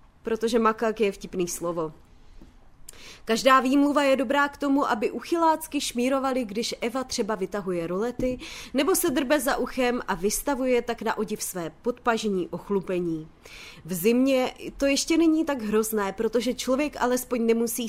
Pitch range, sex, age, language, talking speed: 215-280 Hz, female, 20-39, Czech, 145 wpm